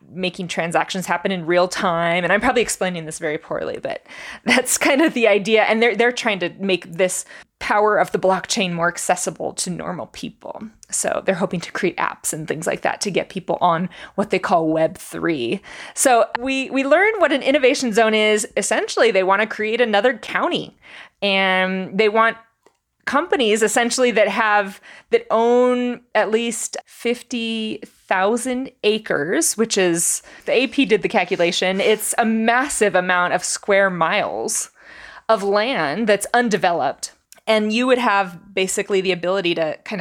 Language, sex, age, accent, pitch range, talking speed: English, female, 20-39, American, 185-230 Hz, 165 wpm